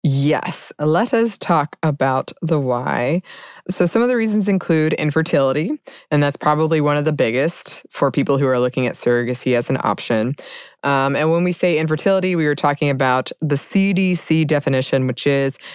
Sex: female